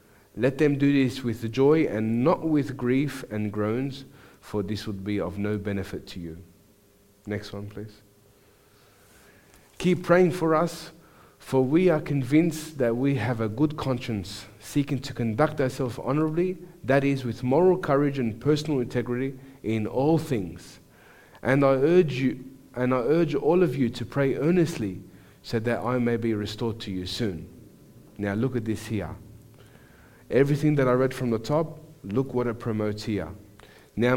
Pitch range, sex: 105-140 Hz, male